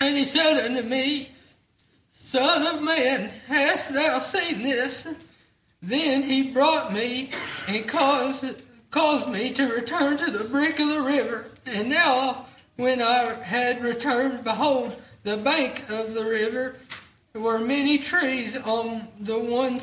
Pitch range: 225-275 Hz